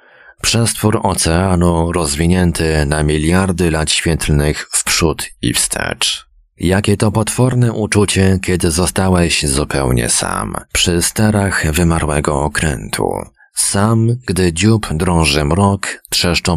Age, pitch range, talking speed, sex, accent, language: 40-59, 80-95 Hz, 105 wpm, male, native, Polish